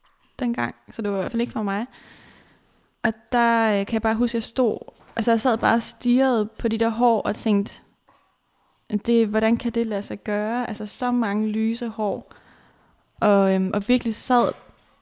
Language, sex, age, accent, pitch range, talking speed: Danish, female, 20-39, native, 205-230 Hz, 190 wpm